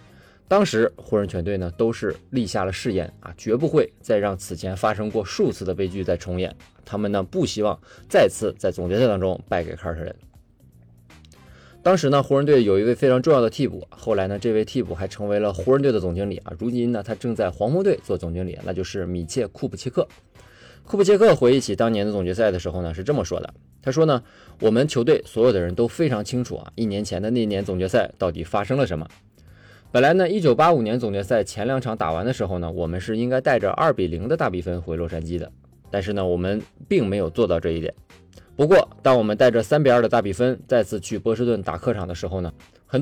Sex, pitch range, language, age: male, 90-120 Hz, Chinese, 20-39